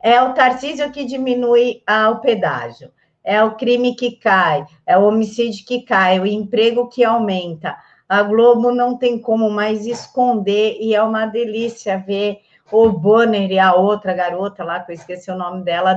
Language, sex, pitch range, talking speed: Portuguese, female, 195-230 Hz, 175 wpm